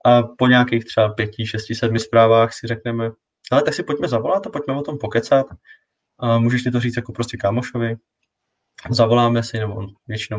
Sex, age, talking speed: male, 20-39, 180 wpm